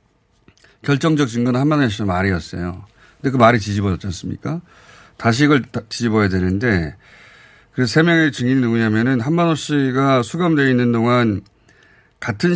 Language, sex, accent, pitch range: Korean, male, native, 105-145 Hz